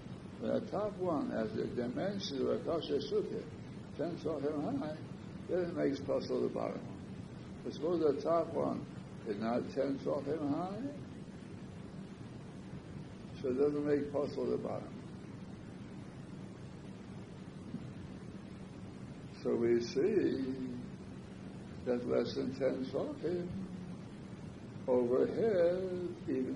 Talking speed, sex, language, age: 105 wpm, male, English, 60-79